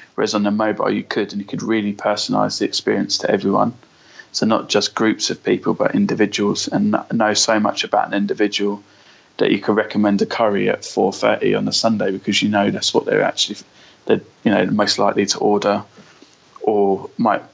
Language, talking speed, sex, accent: English, 195 wpm, male, British